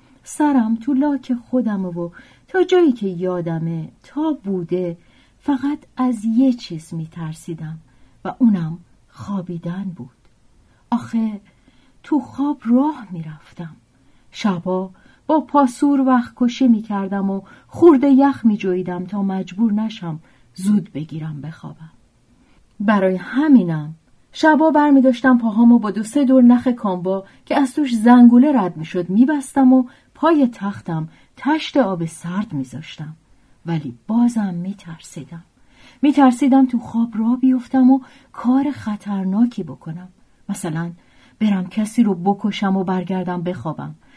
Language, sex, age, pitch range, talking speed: Persian, female, 40-59, 170-255 Hz, 125 wpm